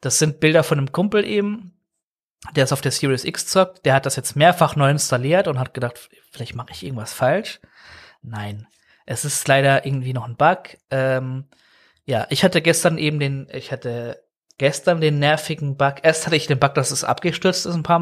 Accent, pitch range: German, 135-175 Hz